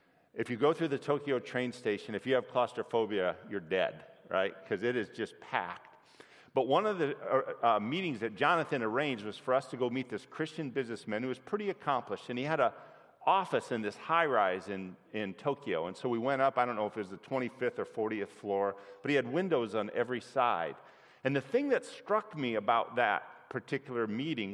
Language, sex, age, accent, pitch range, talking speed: English, male, 40-59, American, 120-160 Hz, 210 wpm